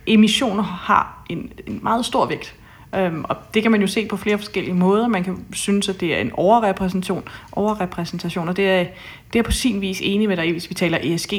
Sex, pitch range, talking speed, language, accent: female, 165-200 Hz, 215 wpm, Danish, native